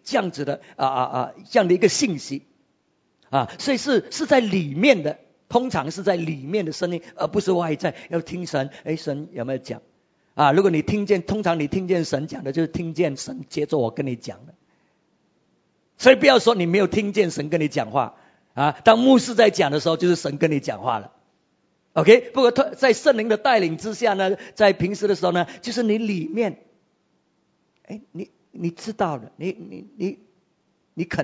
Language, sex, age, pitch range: English, male, 50-69, 150-205 Hz